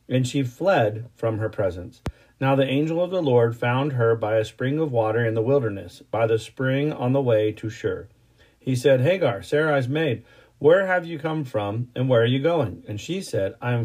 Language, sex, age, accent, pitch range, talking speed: English, male, 40-59, American, 115-145 Hz, 215 wpm